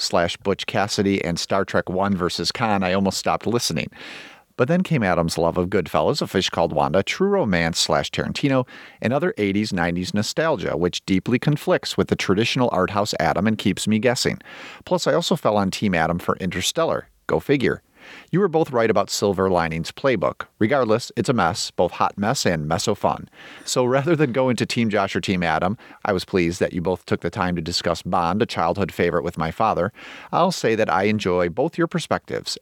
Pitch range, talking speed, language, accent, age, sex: 90-125 Hz, 200 wpm, English, American, 40-59, male